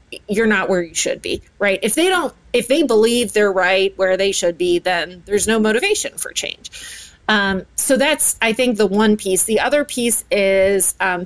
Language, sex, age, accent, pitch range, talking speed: English, female, 30-49, American, 195-260 Hz, 205 wpm